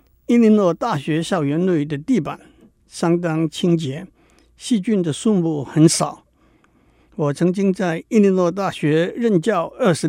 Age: 60-79